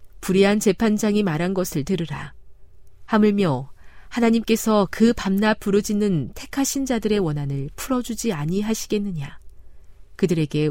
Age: 40-59